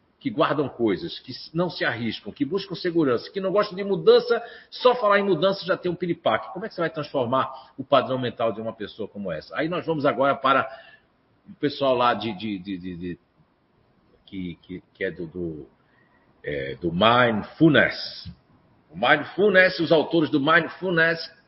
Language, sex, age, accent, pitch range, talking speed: Portuguese, male, 50-69, Brazilian, 125-175 Hz, 155 wpm